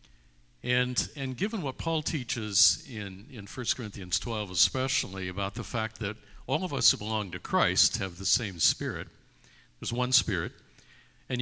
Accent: American